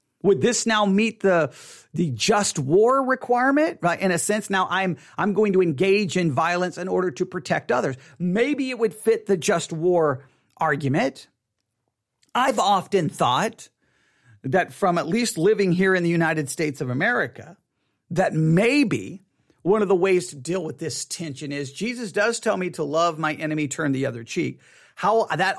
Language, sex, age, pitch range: English, male, 40-59, 150-200 Hz